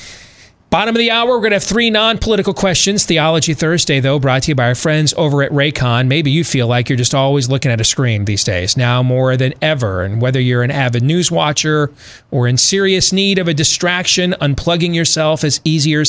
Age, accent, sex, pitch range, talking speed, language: 40-59, American, male, 125-155 Hz, 215 wpm, English